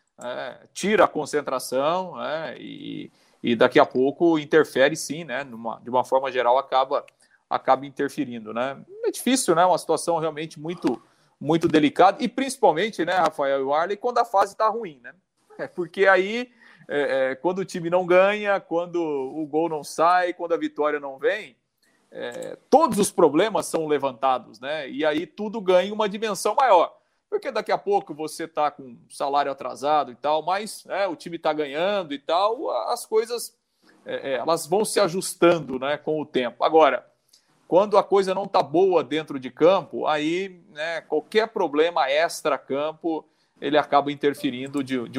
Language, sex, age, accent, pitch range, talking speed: Portuguese, male, 40-59, Brazilian, 140-195 Hz, 170 wpm